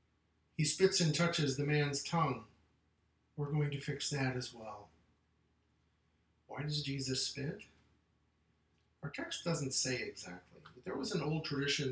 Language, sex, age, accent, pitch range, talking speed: English, male, 50-69, American, 90-145 Hz, 145 wpm